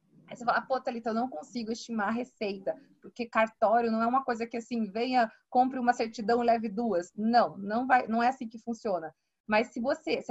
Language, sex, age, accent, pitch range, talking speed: Portuguese, female, 20-39, Brazilian, 220-260 Hz, 220 wpm